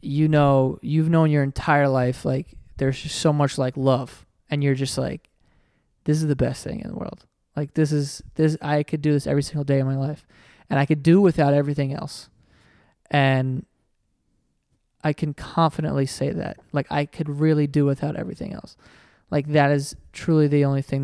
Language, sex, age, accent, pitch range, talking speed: English, male, 20-39, American, 135-155 Hz, 195 wpm